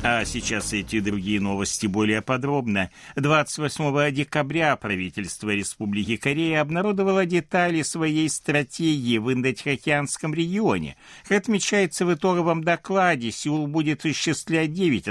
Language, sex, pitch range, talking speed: Russian, male, 100-150 Hz, 110 wpm